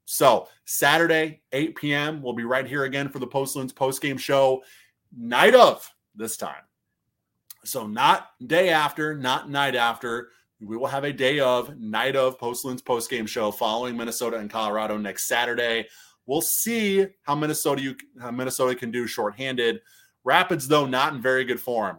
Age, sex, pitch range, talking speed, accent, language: 30-49, male, 110-145 Hz, 160 wpm, American, English